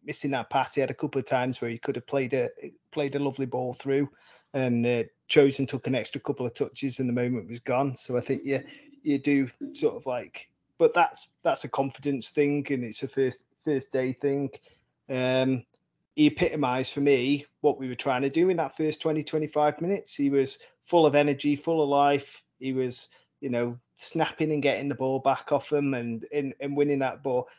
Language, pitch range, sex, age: English, 130-150 Hz, male, 20-39